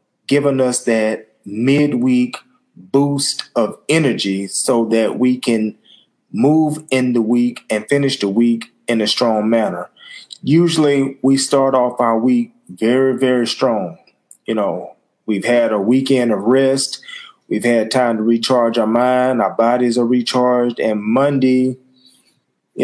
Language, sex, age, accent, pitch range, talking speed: English, male, 30-49, American, 110-130 Hz, 140 wpm